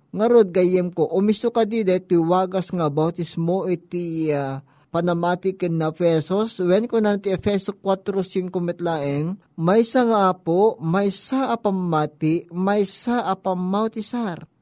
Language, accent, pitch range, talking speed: Filipino, native, 160-205 Hz, 110 wpm